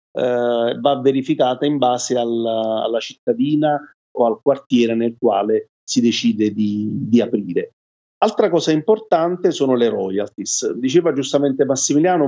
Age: 40-59